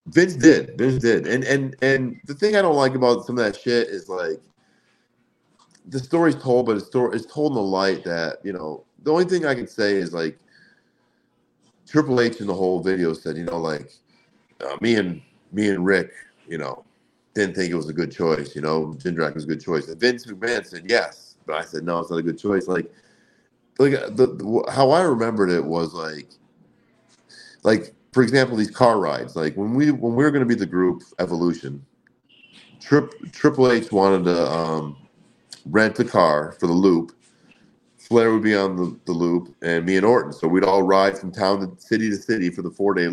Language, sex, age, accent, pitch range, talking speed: English, male, 40-59, American, 85-120 Hz, 210 wpm